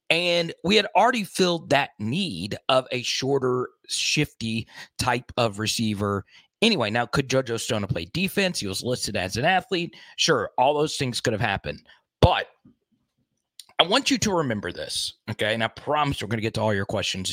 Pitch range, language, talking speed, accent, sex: 110-155 Hz, English, 185 wpm, American, male